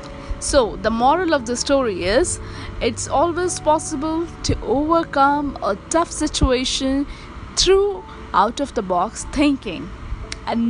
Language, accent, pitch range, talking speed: Hindi, native, 230-320 Hz, 125 wpm